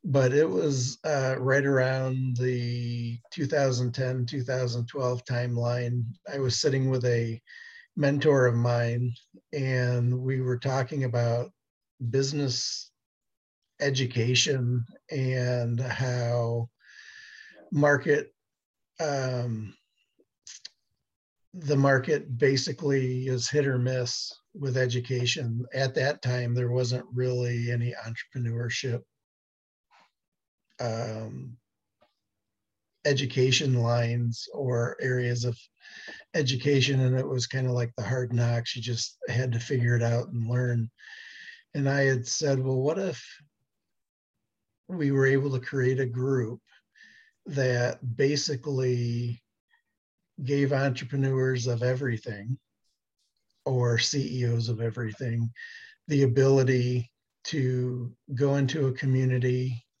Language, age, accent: English, 50-69, American